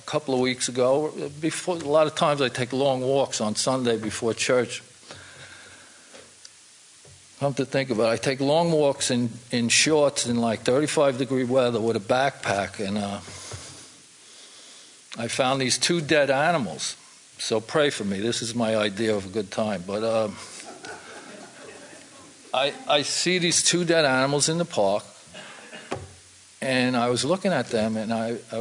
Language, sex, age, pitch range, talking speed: English, male, 50-69, 110-140 Hz, 165 wpm